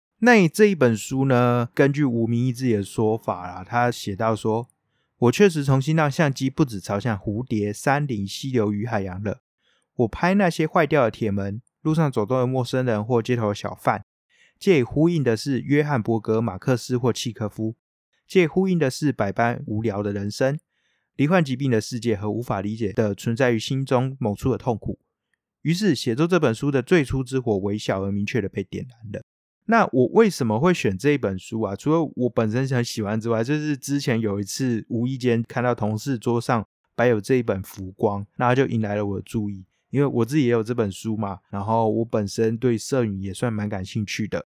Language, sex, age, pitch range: Chinese, male, 20-39, 105-135 Hz